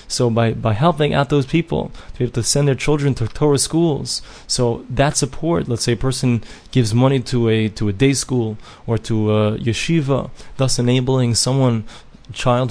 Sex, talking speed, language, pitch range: male, 195 wpm, English, 120-145 Hz